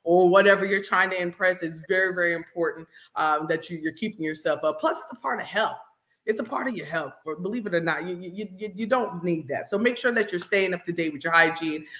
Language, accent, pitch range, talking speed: English, American, 165-205 Hz, 250 wpm